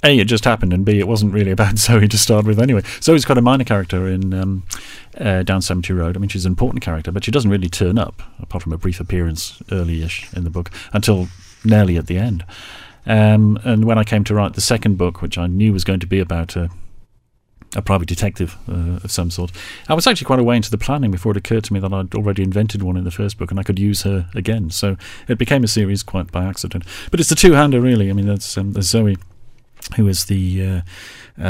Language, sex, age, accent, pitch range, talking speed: English, male, 40-59, British, 90-110 Hz, 250 wpm